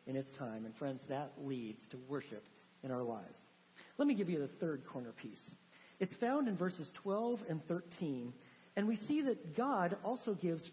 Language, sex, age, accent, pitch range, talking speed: English, male, 50-69, American, 180-245 Hz, 190 wpm